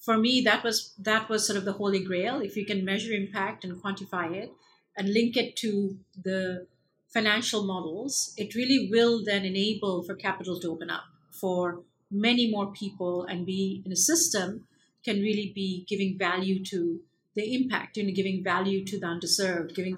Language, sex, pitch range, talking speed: English, female, 180-215 Hz, 185 wpm